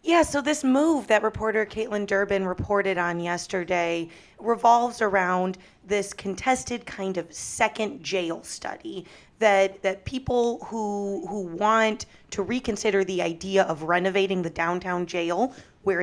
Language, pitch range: English, 180-220 Hz